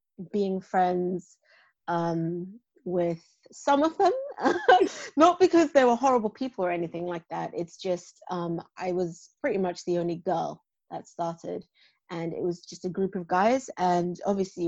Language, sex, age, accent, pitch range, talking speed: English, female, 30-49, British, 175-215 Hz, 160 wpm